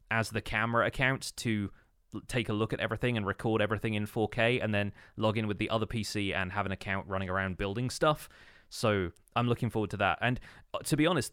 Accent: British